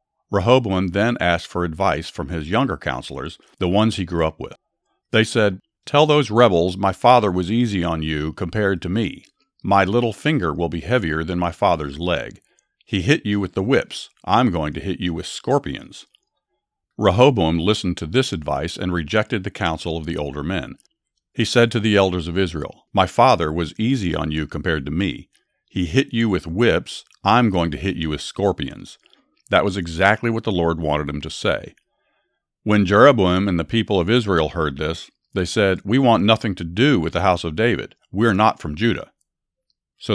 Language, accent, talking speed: English, American, 195 wpm